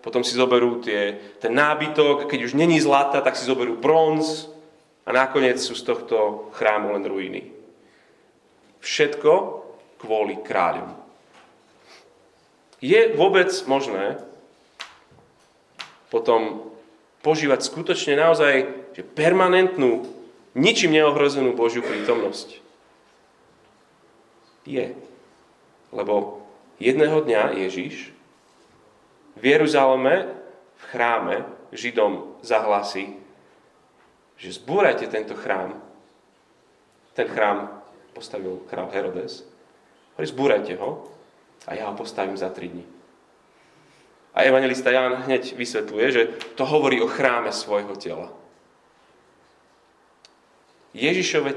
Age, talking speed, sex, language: 30-49, 90 wpm, male, Slovak